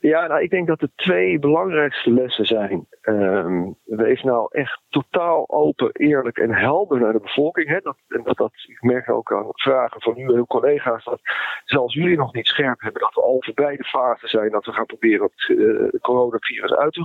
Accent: Dutch